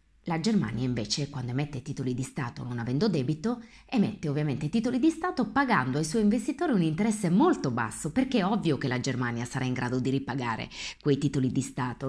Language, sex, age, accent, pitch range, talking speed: Italian, female, 30-49, native, 135-205 Hz, 195 wpm